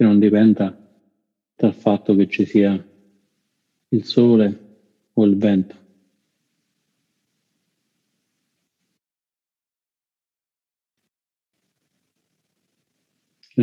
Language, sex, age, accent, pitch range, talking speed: Italian, male, 50-69, native, 95-105 Hz, 60 wpm